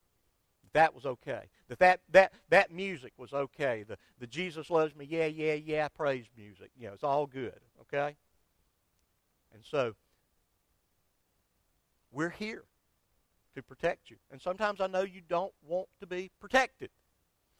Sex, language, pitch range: male, English, 125-200 Hz